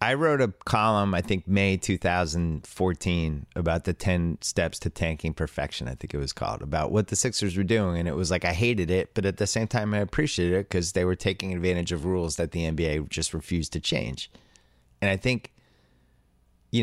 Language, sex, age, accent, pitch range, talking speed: English, male, 30-49, American, 80-100 Hz, 210 wpm